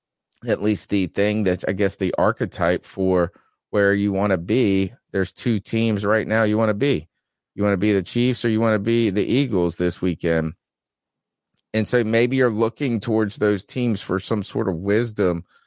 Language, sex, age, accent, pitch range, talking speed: English, male, 30-49, American, 100-120 Hz, 200 wpm